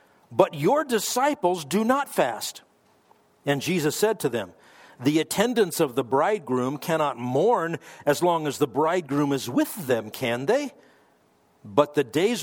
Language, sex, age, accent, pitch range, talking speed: English, male, 50-69, American, 135-180 Hz, 150 wpm